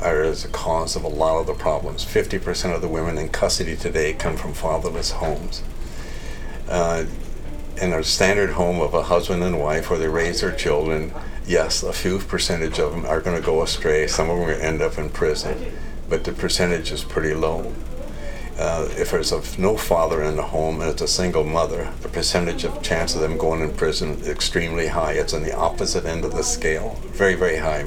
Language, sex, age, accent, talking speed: English, male, 60-79, American, 215 wpm